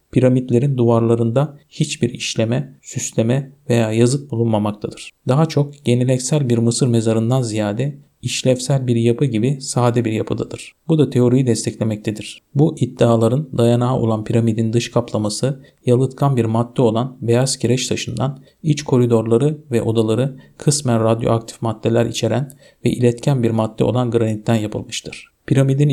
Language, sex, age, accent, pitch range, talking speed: Turkish, male, 50-69, native, 115-135 Hz, 130 wpm